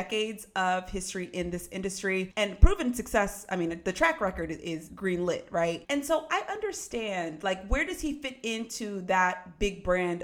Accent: American